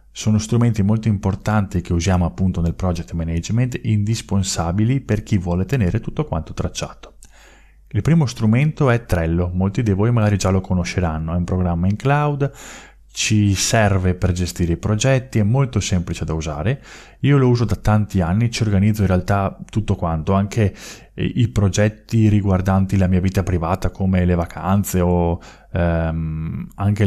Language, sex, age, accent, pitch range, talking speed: Italian, male, 20-39, native, 90-110 Hz, 160 wpm